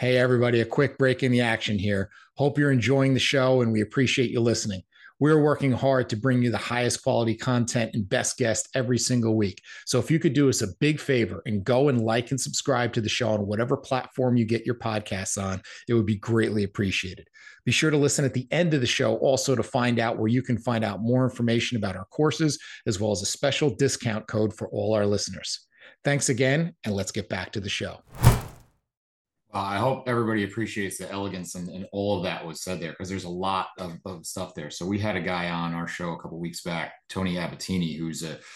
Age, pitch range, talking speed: 40-59, 95-125 Hz, 230 wpm